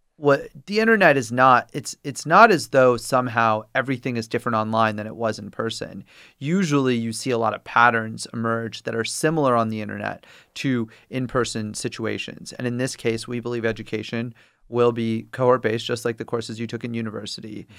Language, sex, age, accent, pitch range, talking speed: English, male, 30-49, American, 115-130 Hz, 185 wpm